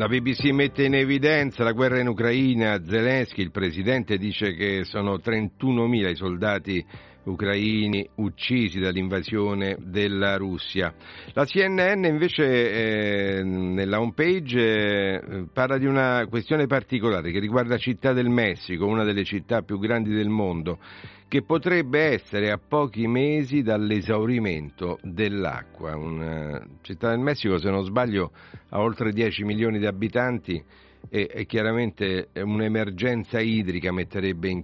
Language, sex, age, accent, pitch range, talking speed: Italian, male, 50-69, native, 95-115 Hz, 130 wpm